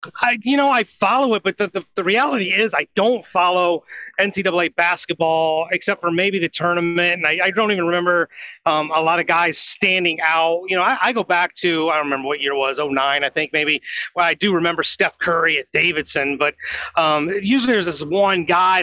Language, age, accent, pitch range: English, 30-49, American, 170-225 Hz